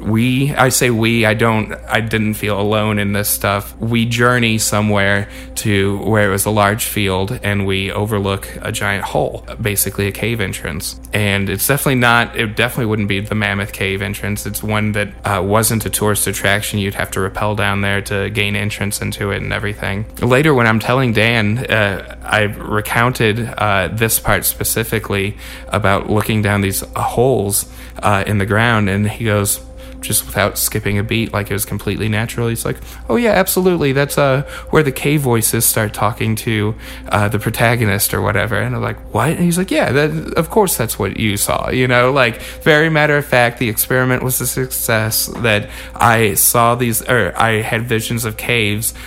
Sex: male